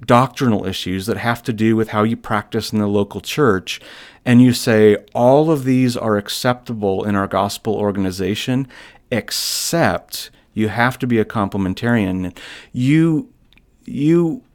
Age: 40-59